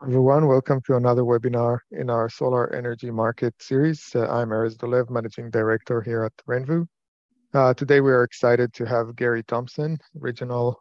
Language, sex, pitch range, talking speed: English, male, 120-140 Hz, 165 wpm